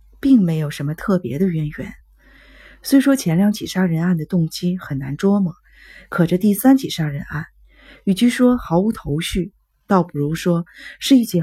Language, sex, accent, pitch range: Chinese, female, native, 160-215 Hz